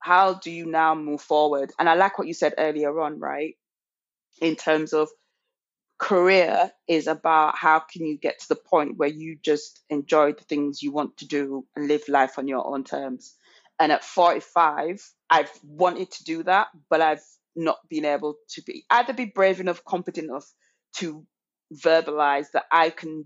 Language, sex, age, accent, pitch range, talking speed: English, female, 20-39, British, 150-170 Hz, 185 wpm